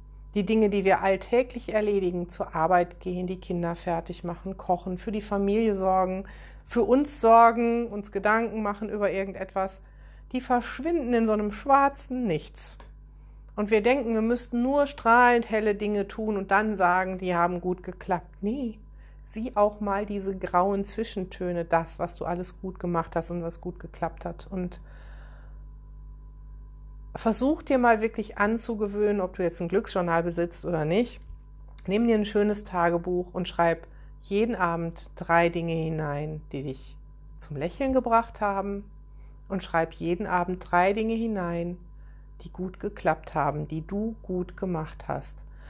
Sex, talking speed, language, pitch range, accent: female, 150 wpm, German, 170-215 Hz, German